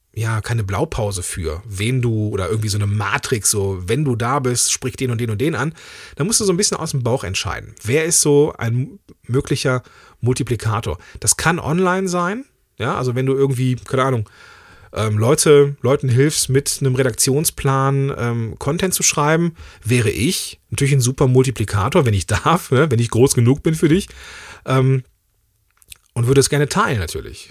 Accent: German